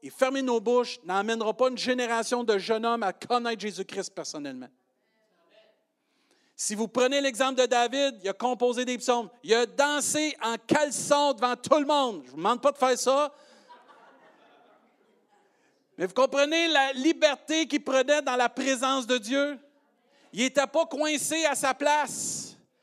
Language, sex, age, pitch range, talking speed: French, male, 50-69, 235-285 Hz, 165 wpm